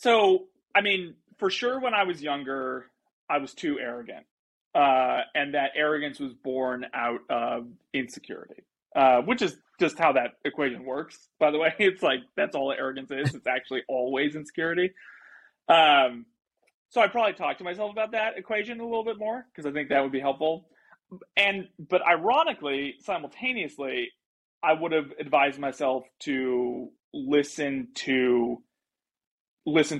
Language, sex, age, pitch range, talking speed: English, male, 30-49, 130-185 Hz, 155 wpm